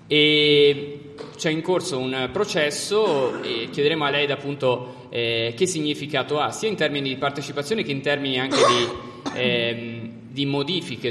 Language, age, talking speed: Italian, 20-39, 150 wpm